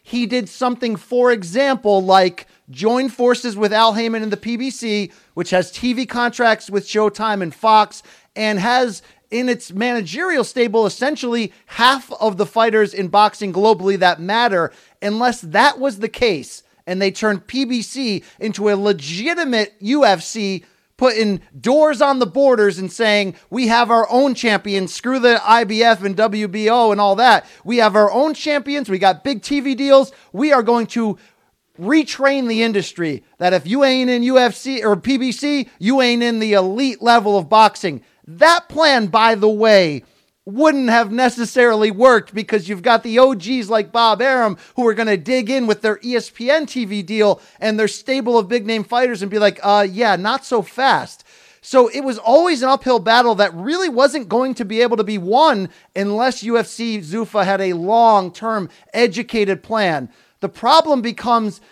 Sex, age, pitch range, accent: male, 30-49, 200-250 Hz, American